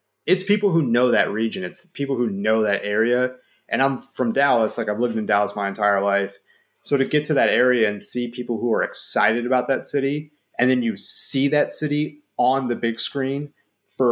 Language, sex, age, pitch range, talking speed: English, male, 30-49, 110-135 Hz, 215 wpm